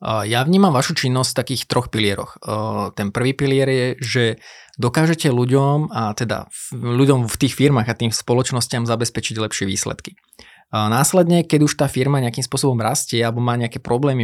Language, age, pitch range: Slovak, 20-39, 120-135 Hz